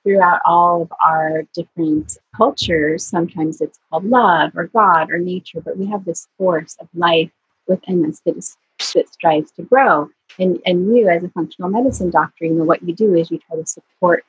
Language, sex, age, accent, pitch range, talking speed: English, female, 30-49, American, 165-205 Hz, 195 wpm